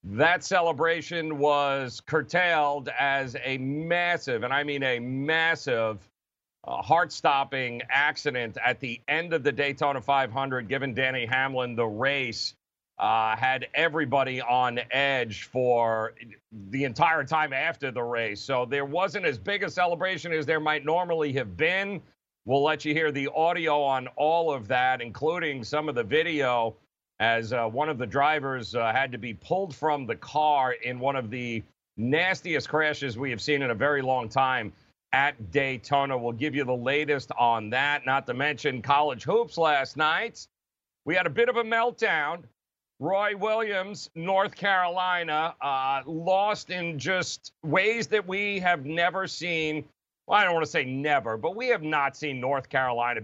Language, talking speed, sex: English, 165 wpm, male